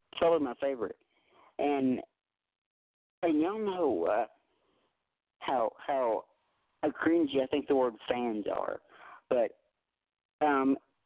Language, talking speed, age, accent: English, 105 wpm, 40-59, American